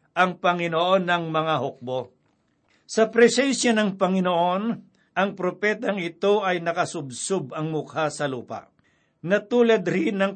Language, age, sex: Filipino, 60-79, male